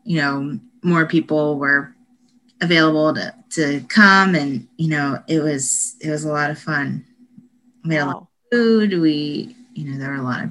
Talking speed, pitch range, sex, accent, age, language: 195 wpm, 150-220 Hz, female, American, 30-49, English